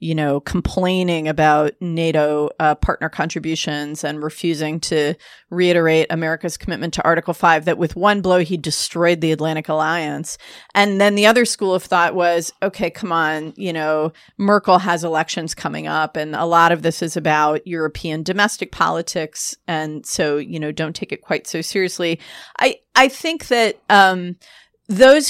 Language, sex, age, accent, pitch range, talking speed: English, female, 30-49, American, 160-195 Hz, 165 wpm